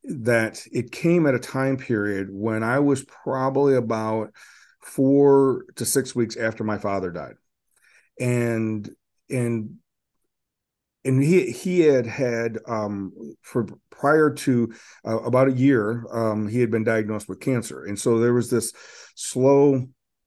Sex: male